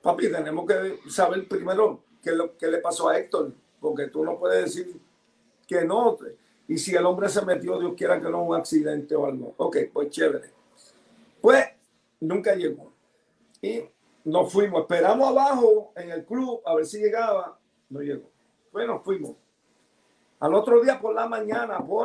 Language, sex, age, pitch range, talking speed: English, male, 50-69, 180-280 Hz, 170 wpm